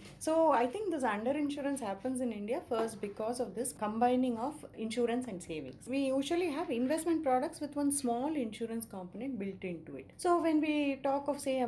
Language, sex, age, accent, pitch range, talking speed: English, female, 30-49, Indian, 195-275 Hz, 195 wpm